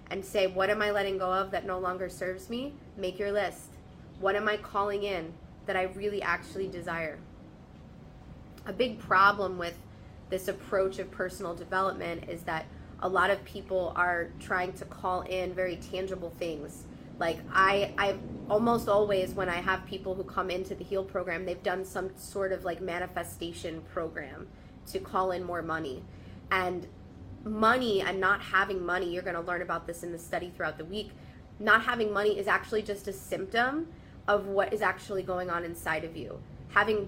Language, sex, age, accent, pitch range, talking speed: English, female, 20-39, American, 175-200 Hz, 180 wpm